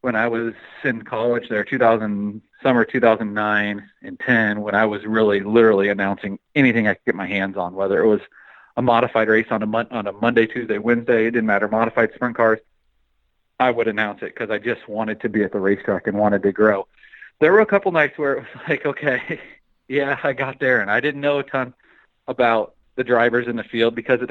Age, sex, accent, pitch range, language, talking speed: 40-59, male, American, 105-130 Hz, English, 215 wpm